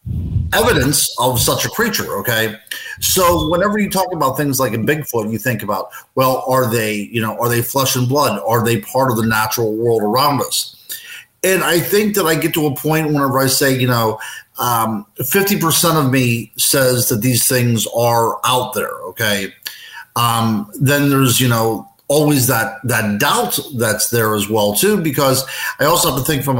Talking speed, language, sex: 190 wpm, English, male